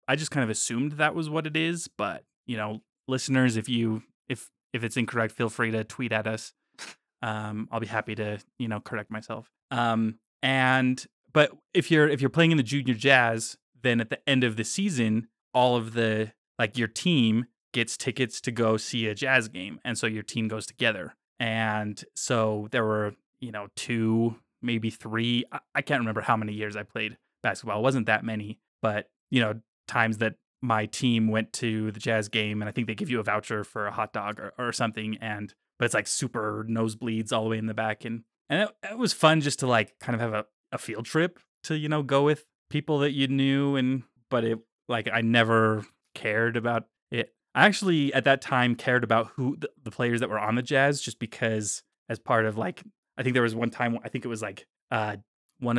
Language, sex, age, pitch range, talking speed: English, male, 20-39, 110-130 Hz, 220 wpm